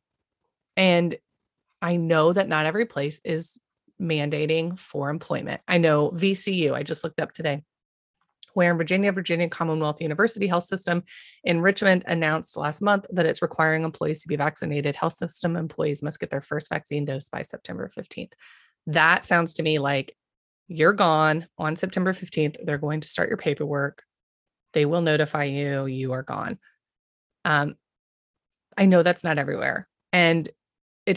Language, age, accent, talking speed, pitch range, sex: English, 30-49, American, 160 wpm, 155-185 Hz, female